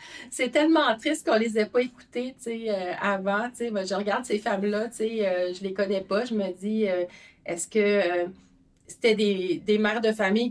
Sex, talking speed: female, 195 wpm